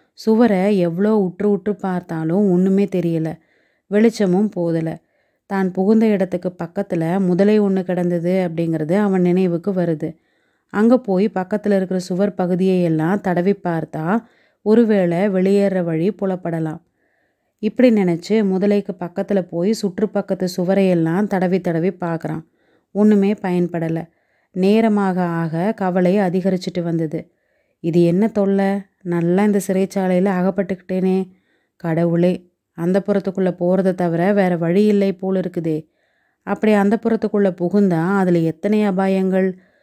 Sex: female